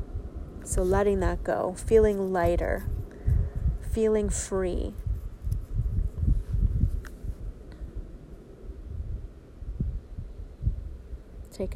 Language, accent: English, American